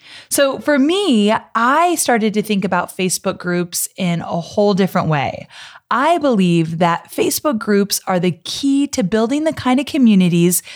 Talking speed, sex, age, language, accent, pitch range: 160 wpm, female, 30-49, English, American, 180-255 Hz